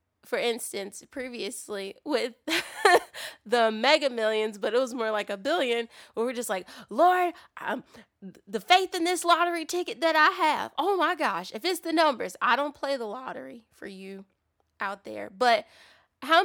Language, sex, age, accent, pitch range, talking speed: English, female, 20-39, American, 210-290 Hz, 170 wpm